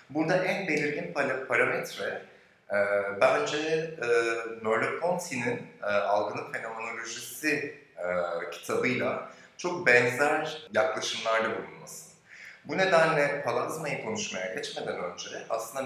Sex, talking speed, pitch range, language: male, 90 wpm, 100-155 Hz, Turkish